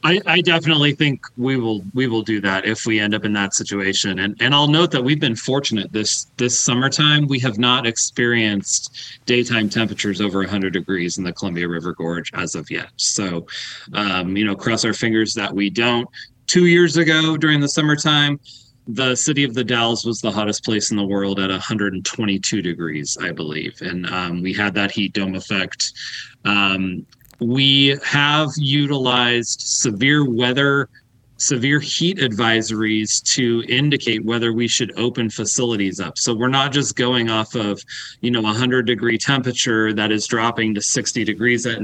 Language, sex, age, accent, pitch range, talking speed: English, male, 30-49, American, 100-130 Hz, 175 wpm